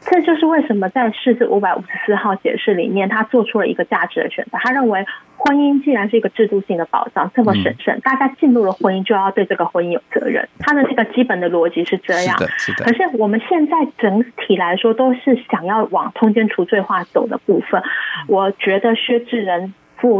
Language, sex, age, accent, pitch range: Chinese, female, 20-39, native, 190-245 Hz